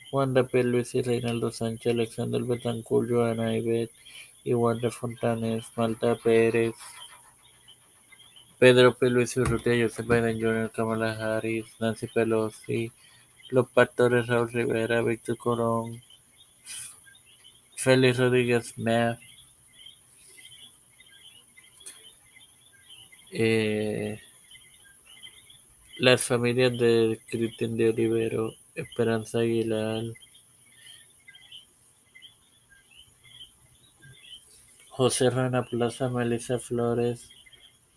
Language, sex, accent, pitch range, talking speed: Spanish, male, Indian, 110-120 Hz, 75 wpm